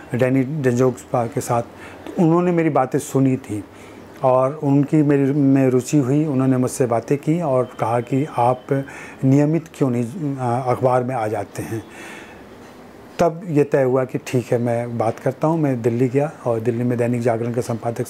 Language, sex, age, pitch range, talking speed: Hindi, male, 30-49, 125-145 Hz, 175 wpm